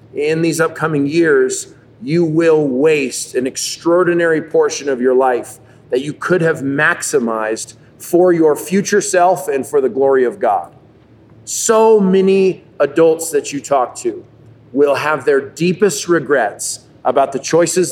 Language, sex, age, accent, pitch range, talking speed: English, male, 40-59, American, 140-180 Hz, 145 wpm